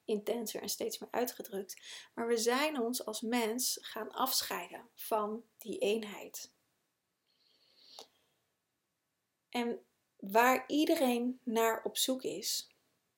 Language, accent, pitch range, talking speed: Dutch, Dutch, 210-250 Hz, 105 wpm